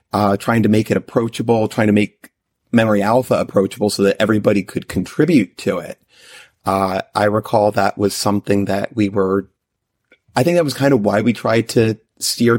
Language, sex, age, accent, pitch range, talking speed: English, male, 30-49, American, 100-120 Hz, 185 wpm